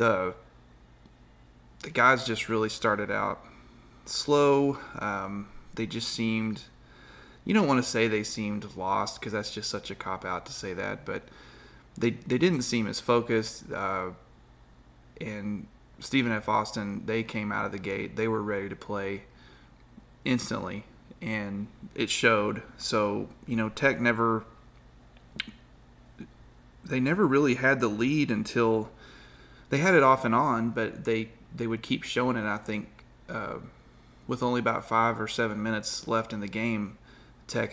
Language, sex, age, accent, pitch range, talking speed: English, male, 30-49, American, 105-115 Hz, 155 wpm